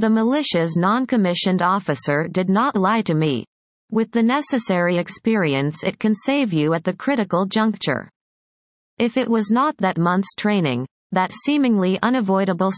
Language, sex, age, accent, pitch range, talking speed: English, female, 30-49, American, 175-225 Hz, 145 wpm